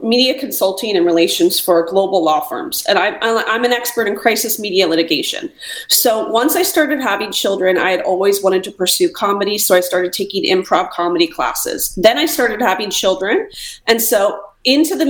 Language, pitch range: English, 190-260 Hz